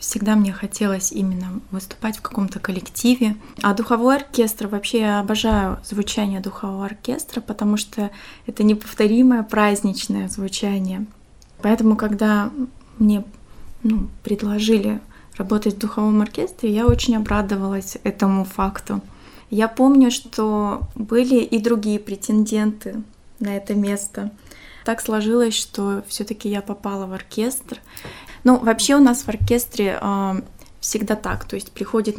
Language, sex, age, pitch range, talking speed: Russian, female, 20-39, 205-230 Hz, 125 wpm